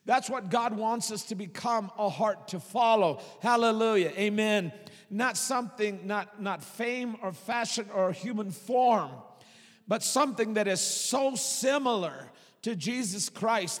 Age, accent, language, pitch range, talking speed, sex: 50-69, American, English, 195-240 Hz, 140 wpm, male